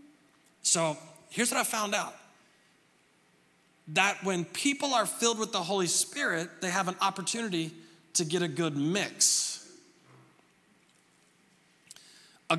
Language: English